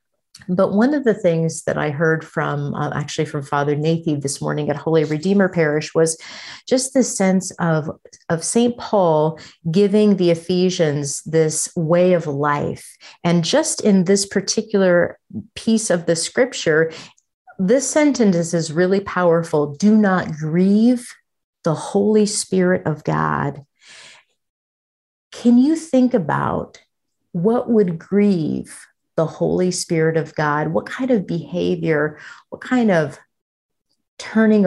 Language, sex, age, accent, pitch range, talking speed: English, female, 40-59, American, 155-200 Hz, 135 wpm